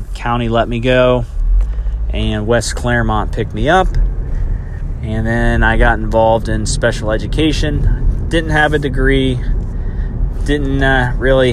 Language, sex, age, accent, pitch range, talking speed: English, male, 30-49, American, 105-120 Hz, 130 wpm